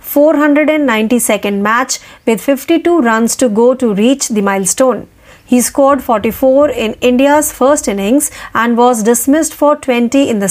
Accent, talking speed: native, 145 wpm